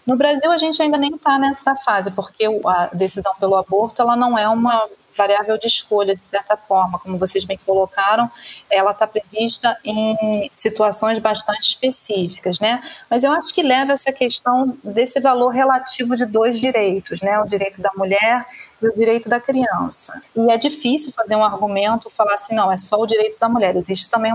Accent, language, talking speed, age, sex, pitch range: Brazilian, Portuguese, 185 wpm, 30-49, female, 205-245 Hz